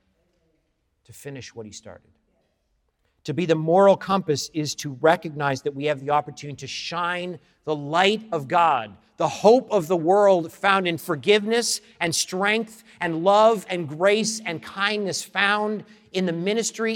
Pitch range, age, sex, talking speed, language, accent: 150-205 Hz, 50-69, male, 155 wpm, English, American